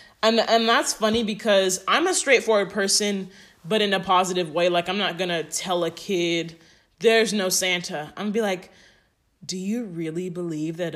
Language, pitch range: English, 170-210 Hz